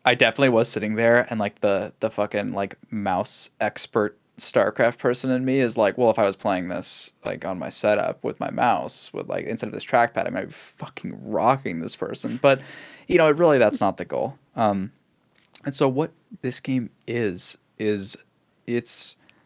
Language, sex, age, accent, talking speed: English, male, 10-29, American, 195 wpm